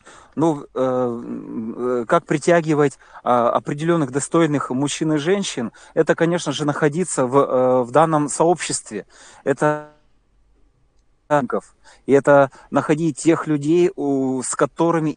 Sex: male